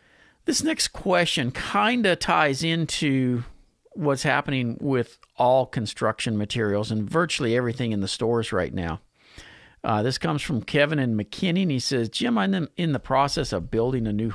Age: 50-69